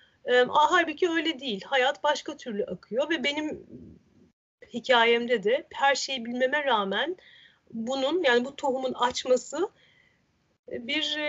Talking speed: 110 wpm